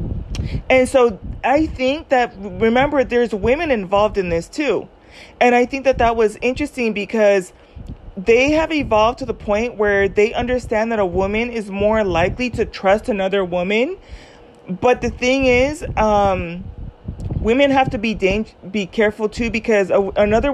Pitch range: 195-240 Hz